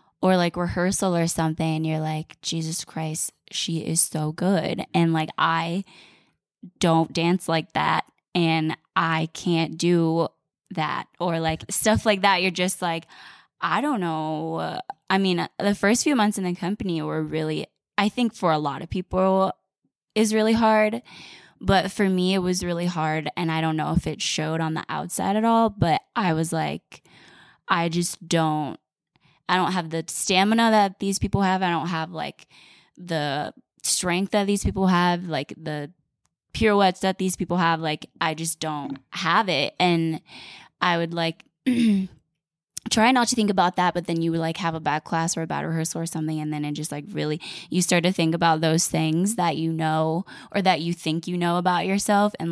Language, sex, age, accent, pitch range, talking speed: English, female, 10-29, American, 160-190 Hz, 190 wpm